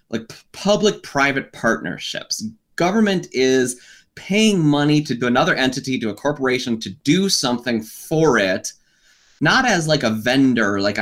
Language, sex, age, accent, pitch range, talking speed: English, male, 20-39, American, 115-165 Hz, 130 wpm